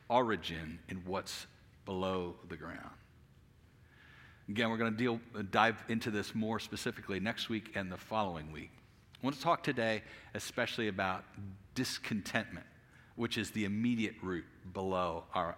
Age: 50-69